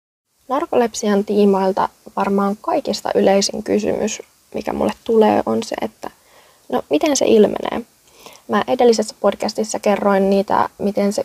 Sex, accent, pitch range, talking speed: female, native, 200-250 Hz, 125 wpm